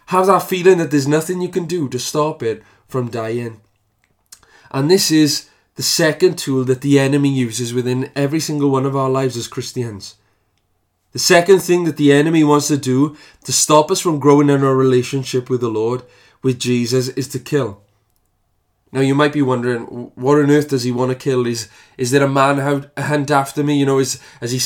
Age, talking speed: 20-39, 205 wpm